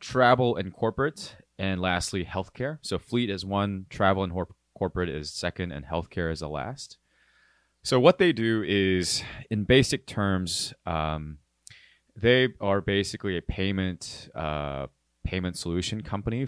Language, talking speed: English, 140 wpm